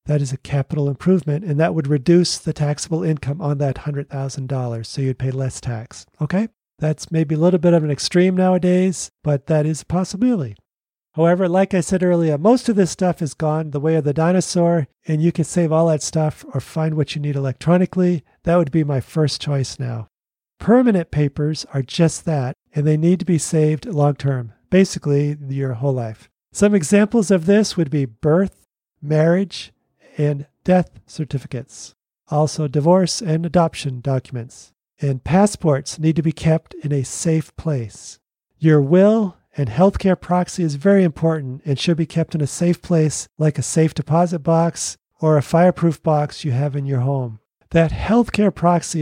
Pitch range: 145-175 Hz